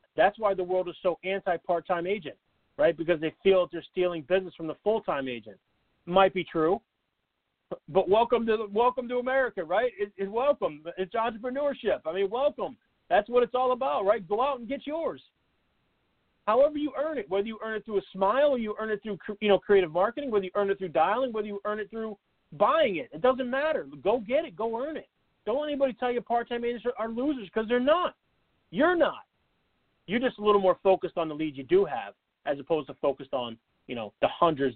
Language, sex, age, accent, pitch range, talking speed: English, male, 40-59, American, 160-235 Hz, 220 wpm